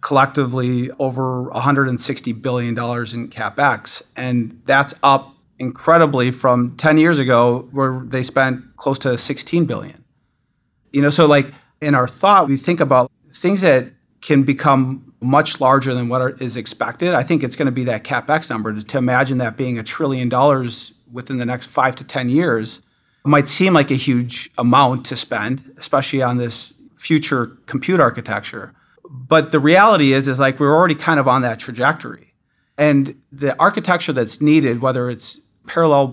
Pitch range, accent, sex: 125-150 Hz, American, male